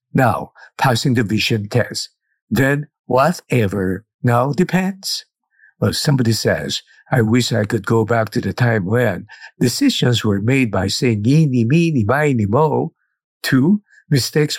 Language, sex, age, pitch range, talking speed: English, male, 50-69, 115-145 Hz, 145 wpm